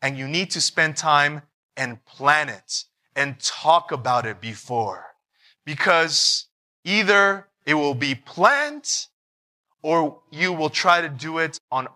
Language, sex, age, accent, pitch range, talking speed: English, male, 20-39, American, 135-180 Hz, 140 wpm